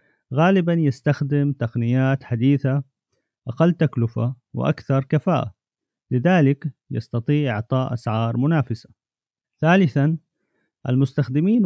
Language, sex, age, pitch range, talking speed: Arabic, male, 30-49, 120-150 Hz, 75 wpm